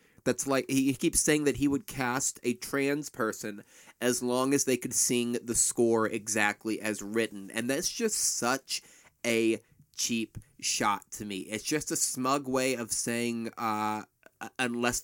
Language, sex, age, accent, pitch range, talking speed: English, male, 30-49, American, 110-140 Hz, 165 wpm